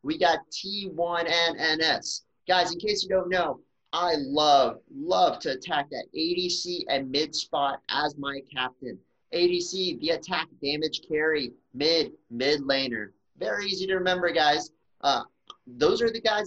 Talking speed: 155 wpm